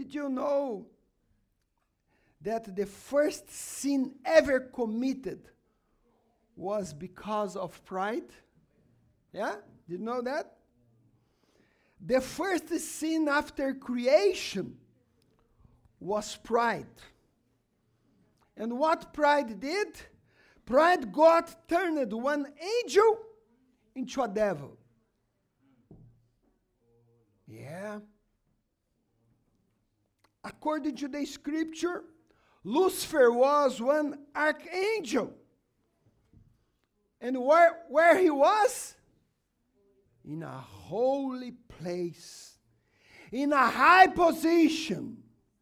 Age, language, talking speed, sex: 50-69, English, 80 wpm, male